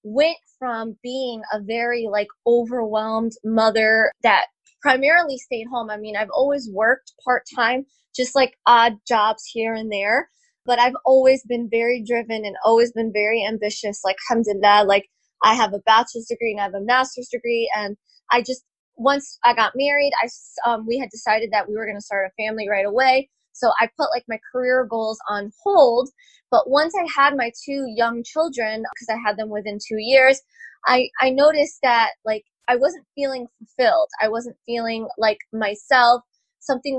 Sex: female